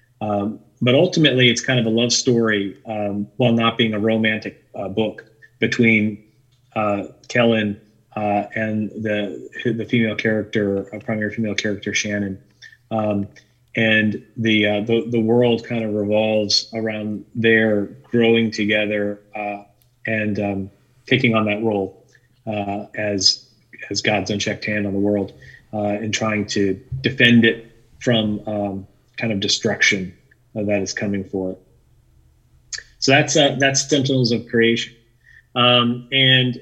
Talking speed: 145 wpm